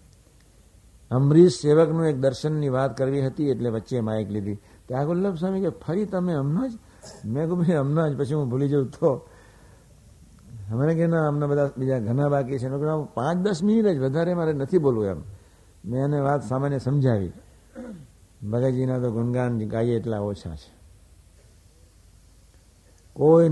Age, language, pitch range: 60-79, Gujarati, 95-150 Hz